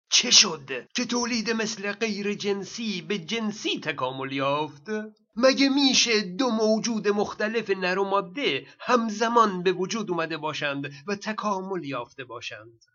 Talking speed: 130 wpm